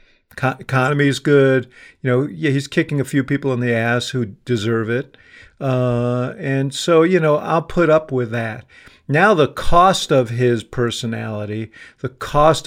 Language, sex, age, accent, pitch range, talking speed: English, male, 50-69, American, 115-140 Hz, 160 wpm